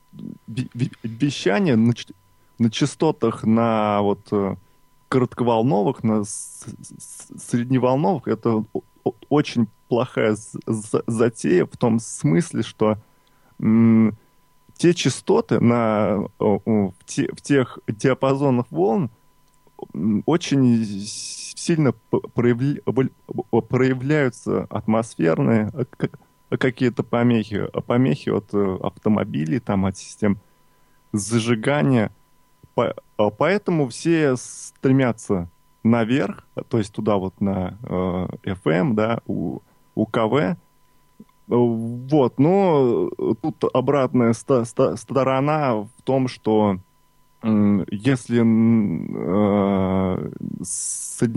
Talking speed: 75 wpm